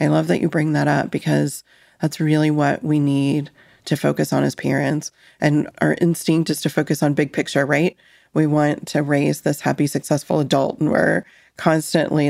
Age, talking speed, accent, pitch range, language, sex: 30-49, 190 wpm, American, 150-175 Hz, English, female